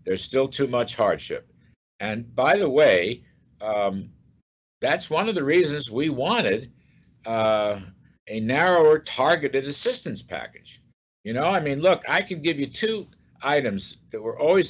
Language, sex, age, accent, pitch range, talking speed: English, male, 60-79, American, 120-175 Hz, 150 wpm